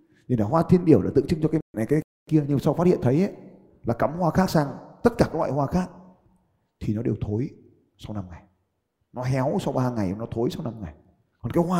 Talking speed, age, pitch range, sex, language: 255 wpm, 30-49, 120-190 Hz, male, Vietnamese